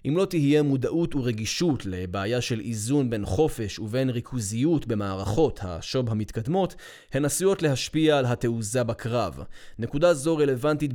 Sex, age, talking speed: male, 20-39, 130 wpm